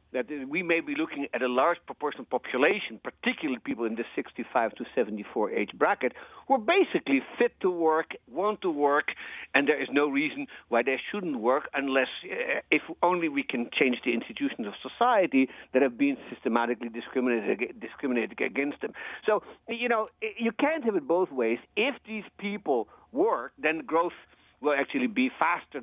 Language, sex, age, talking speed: English, male, 50-69, 170 wpm